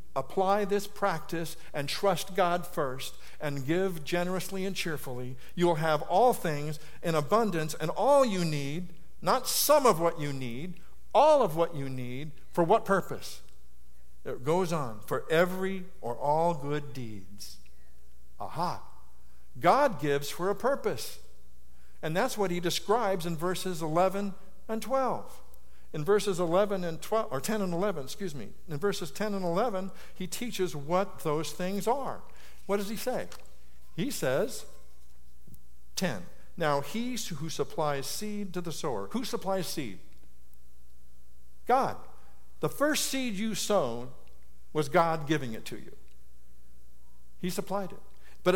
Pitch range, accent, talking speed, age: 120-195 Hz, American, 145 wpm, 60-79